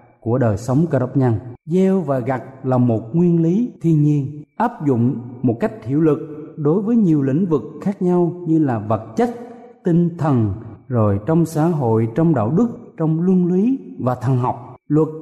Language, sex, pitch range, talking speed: Vietnamese, male, 125-175 Hz, 190 wpm